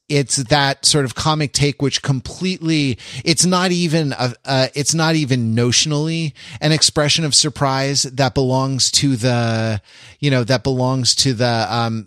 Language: English